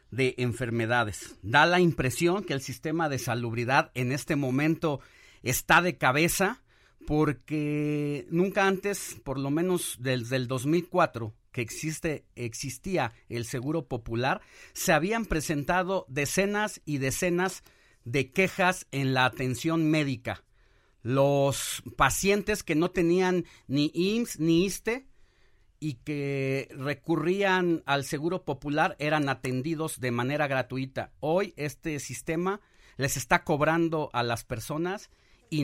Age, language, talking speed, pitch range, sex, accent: 50-69, Spanish, 125 wpm, 130-170 Hz, male, Mexican